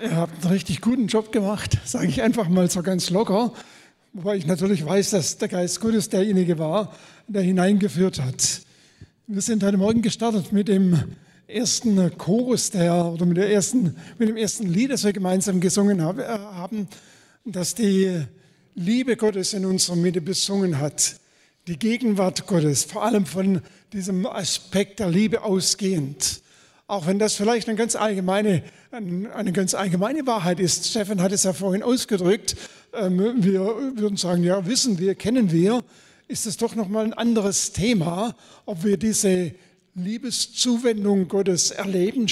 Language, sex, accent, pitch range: German, male, German, 185-220 Hz